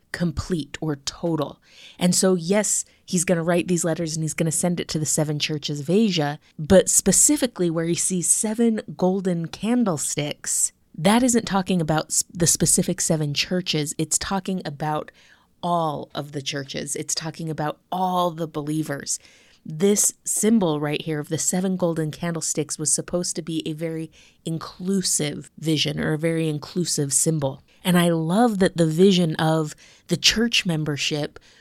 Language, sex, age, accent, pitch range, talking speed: English, female, 20-39, American, 155-190 Hz, 160 wpm